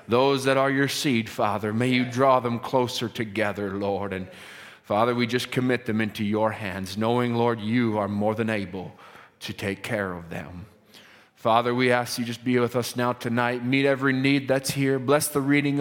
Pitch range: 100-120 Hz